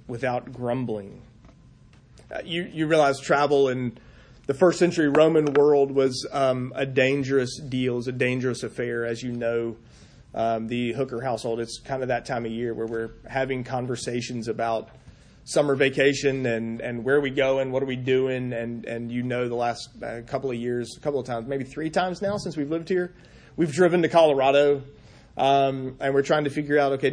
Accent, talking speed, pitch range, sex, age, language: American, 195 wpm, 120-145 Hz, male, 30-49, English